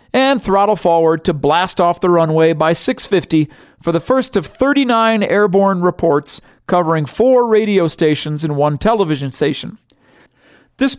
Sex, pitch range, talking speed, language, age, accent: male, 155-200 Hz, 140 wpm, English, 40-59, American